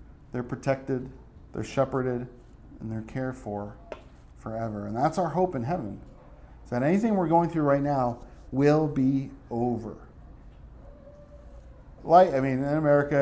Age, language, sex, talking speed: 40-59, English, male, 135 wpm